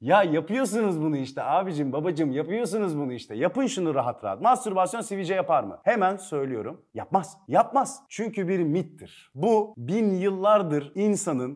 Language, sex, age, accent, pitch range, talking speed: Turkish, male, 40-59, native, 125-205 Hz, 145 wpm